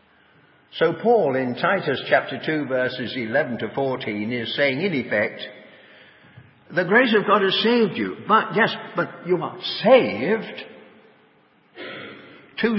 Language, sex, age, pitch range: English, male, 60-79, 140-210 Hz